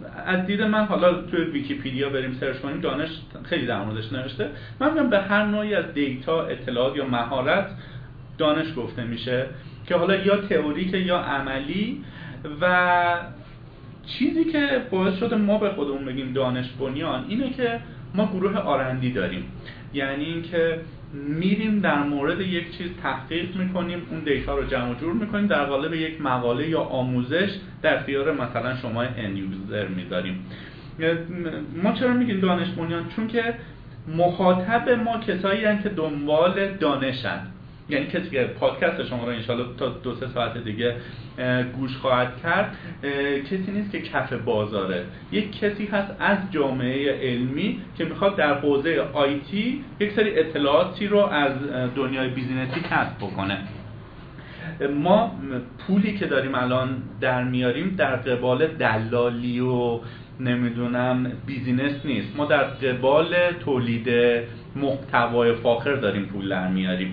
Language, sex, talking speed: Persian, male, 135 wpm